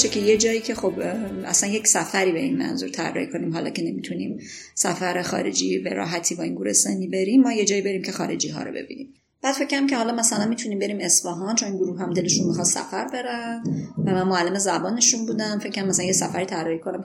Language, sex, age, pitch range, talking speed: Persian, female, 30-49, 170-215 Hz, 215 wpm